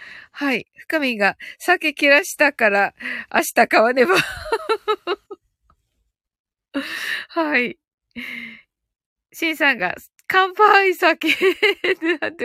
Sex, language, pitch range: female, Japanese, 255-380 Hz